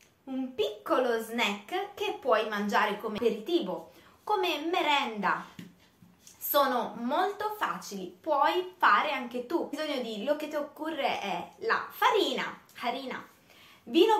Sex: female